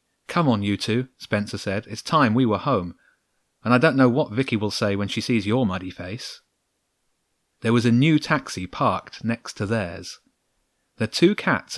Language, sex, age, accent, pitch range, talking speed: English, male, 30-49, British, 100-130 Hz, 190 wpm